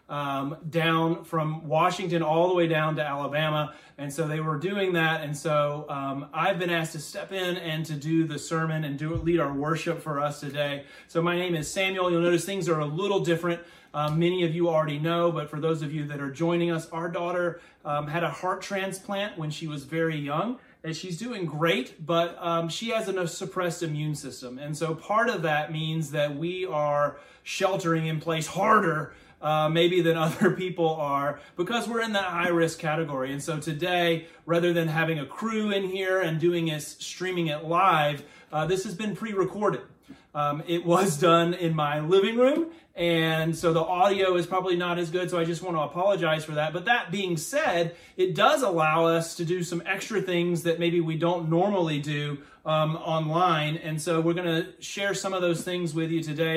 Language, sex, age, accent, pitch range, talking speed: English, male, 30-49, American, 155-180 Hz, 210 wpm